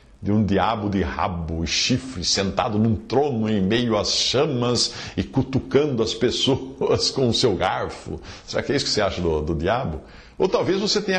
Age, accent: 60-79, Brazilian